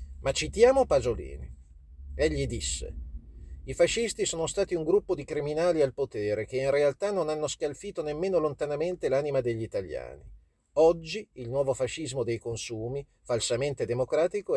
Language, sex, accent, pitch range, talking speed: Italian, male, native, 130-190 Hz, 140 wpm